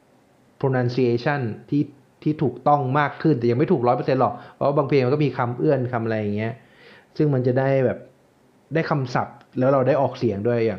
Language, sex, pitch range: Thai, male, 120-145 Hz